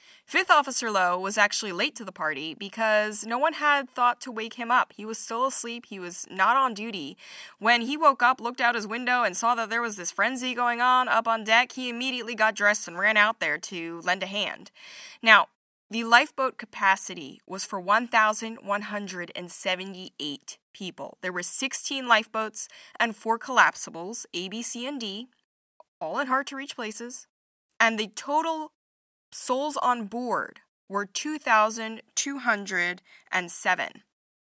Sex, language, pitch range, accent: female, English, 195-250 Hz, American